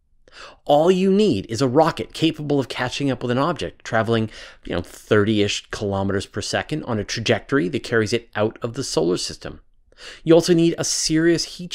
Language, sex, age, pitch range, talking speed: English, male, 30-49, 100-150 Hz, 190 wpm